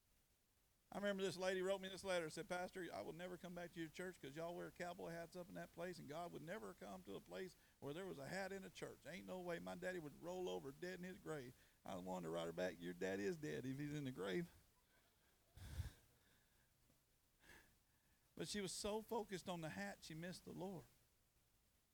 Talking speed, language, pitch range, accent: 225 wpm, English, 115-170 Hz, American